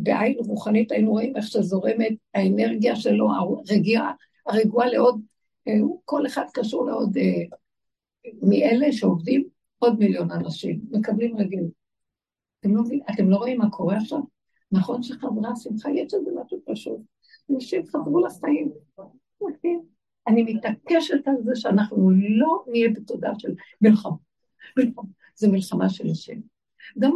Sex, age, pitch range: female, 60-79, 195-255 Hz